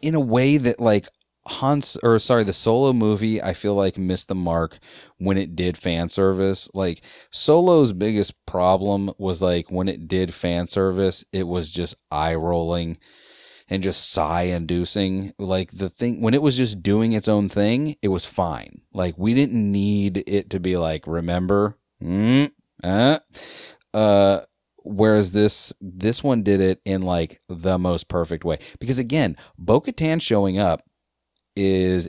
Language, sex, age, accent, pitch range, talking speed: English, male, 30-49, American, 90-110 Hz, 160 wpm